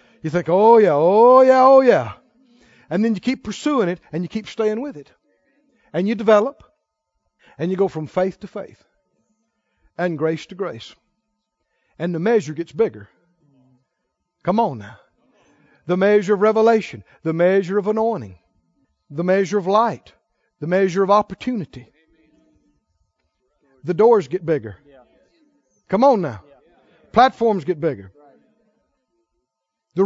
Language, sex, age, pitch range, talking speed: English, male, 60-79, 155-220 Hz, 140 wpm